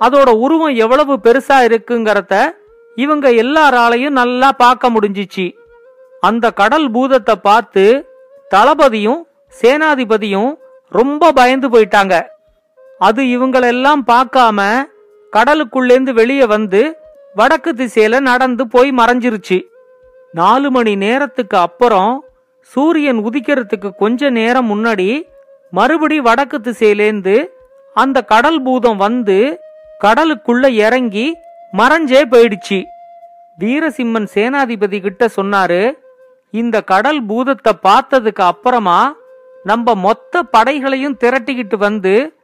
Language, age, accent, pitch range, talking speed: Tamil, 40-59, native, 220-285 Hz, 70 wpm